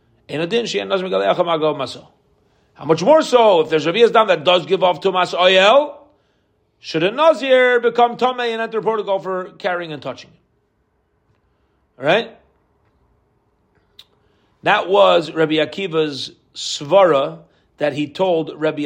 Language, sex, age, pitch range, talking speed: English, male, 40-59, 145-215 Hz, 115 wpm